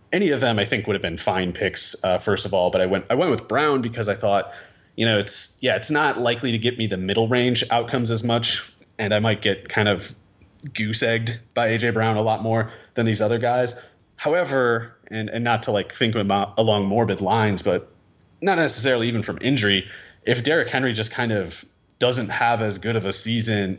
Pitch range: 100-120 Hz